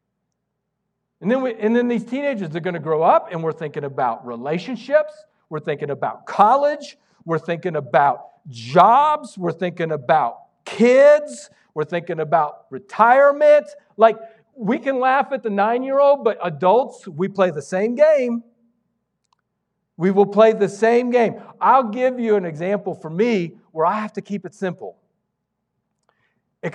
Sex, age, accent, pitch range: male, 50-69, American, 175-235 Hz